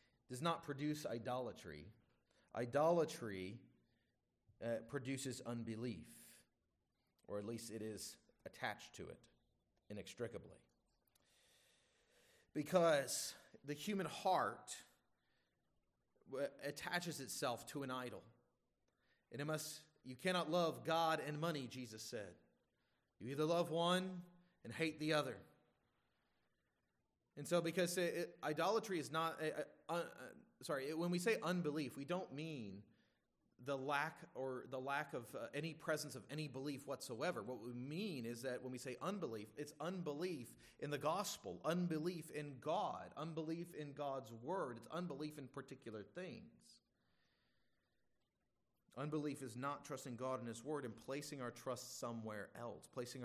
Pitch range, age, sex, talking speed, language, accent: 120-160 Hz, 30-49, male, 130 wpm, English, American